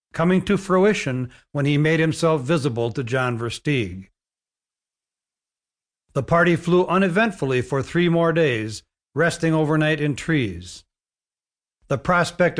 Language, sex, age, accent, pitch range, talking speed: English, male, 60-79, American, 130-165 Hz, 120 wpm